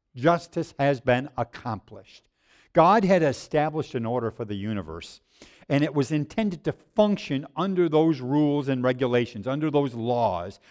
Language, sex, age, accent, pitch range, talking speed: English, male, 50-69, American, 130-180 Hz, 145 wpm